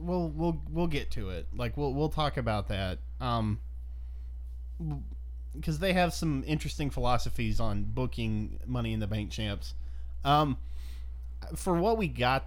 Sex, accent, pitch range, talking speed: male, American, 100-145 Hz, 150 wpm